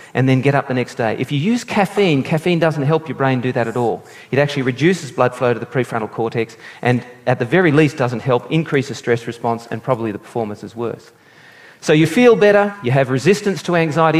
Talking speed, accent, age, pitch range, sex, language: 235 wpm, Australian, 40-59, 125-170 Hz, male, English